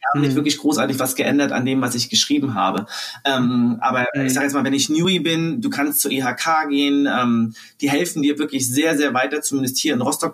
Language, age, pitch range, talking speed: German, 30-49, 130-155 Hz, 220 wpm